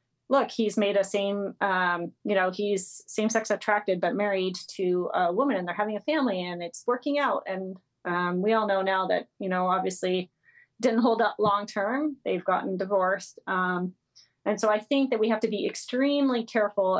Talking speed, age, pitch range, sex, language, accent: 200 wpm, 30-49, 185-225 Hz, female, English, American